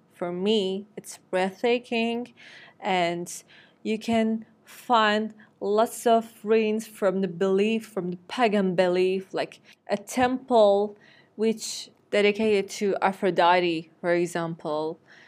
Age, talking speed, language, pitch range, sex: 20-39, 105 wpm, Turkish, 180-215 Hz, female